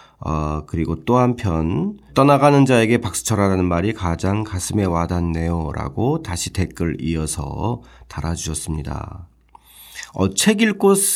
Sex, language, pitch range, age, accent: male, Korean, 85-135 Hz, 40-59, native